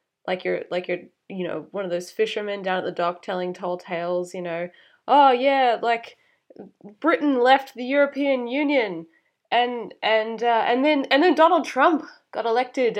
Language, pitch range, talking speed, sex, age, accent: English, 175-235 Hz, 175 wpm, female, 20-39, Australian